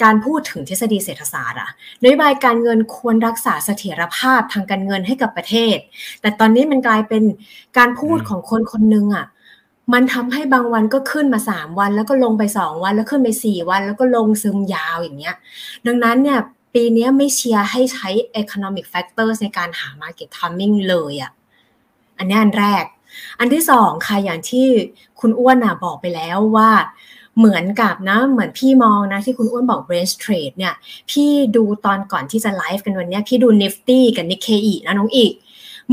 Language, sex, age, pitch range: Thai, female, 30-49, 195-240 Hz